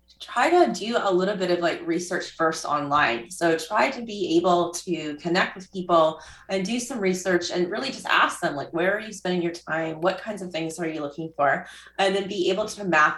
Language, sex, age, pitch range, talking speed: English, female, 20-39, 160-180 Hz, 230 wpm